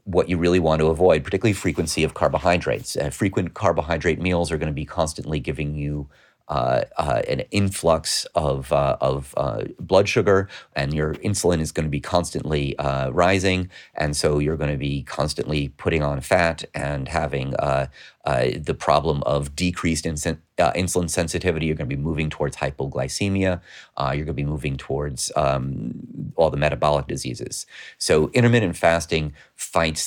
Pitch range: 75-90 Hz